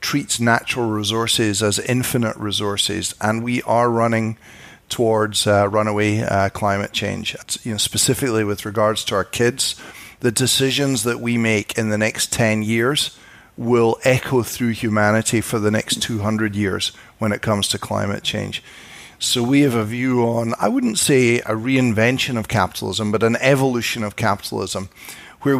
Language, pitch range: English, 105-120 Hz